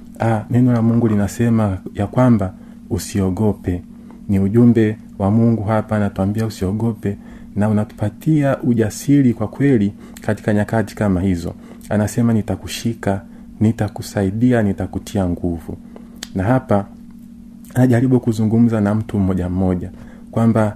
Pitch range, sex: 105-120 Hz, male